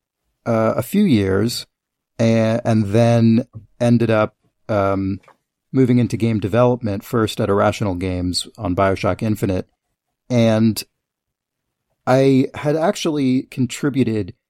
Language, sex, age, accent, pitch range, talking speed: English, male, 40-59, American, 100-120 Hz, 110 wpm